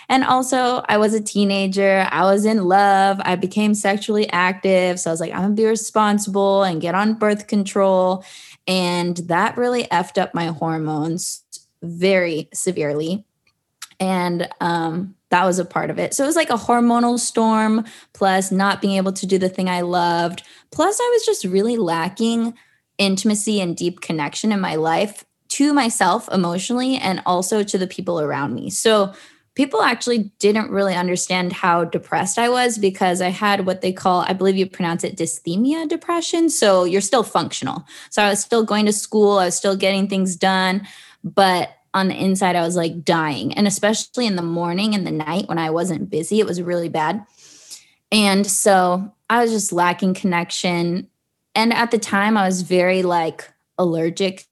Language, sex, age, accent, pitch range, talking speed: English, female, 20-39, American, 175-215 Hz, 180 wpm